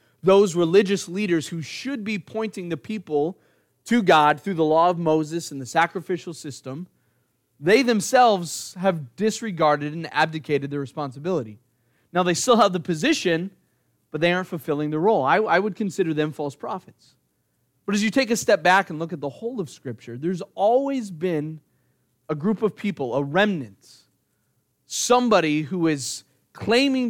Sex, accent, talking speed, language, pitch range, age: male, American, 165 wpm, English, 150-200 Hz, 30-49